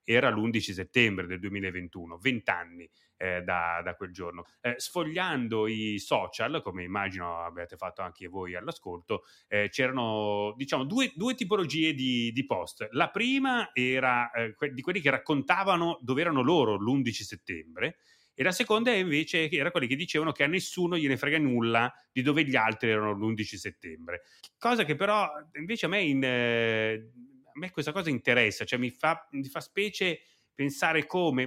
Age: 30-49